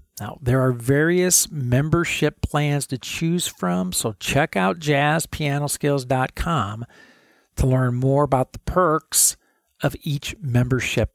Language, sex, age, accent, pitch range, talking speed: English, male, 50-69, American, 110-145 Hz, 120 wpm